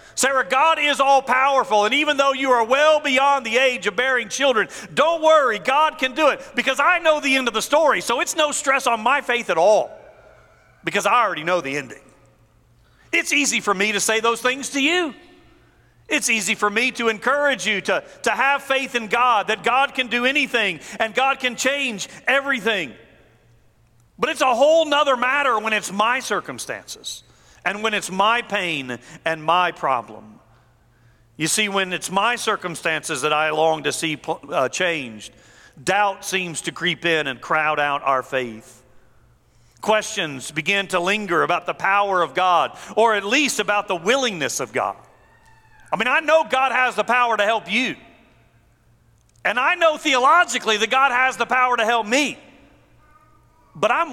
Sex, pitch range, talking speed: male, 165-265 Hz, 175 wpm